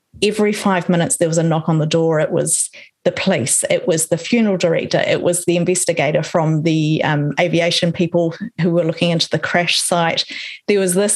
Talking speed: 205 wpm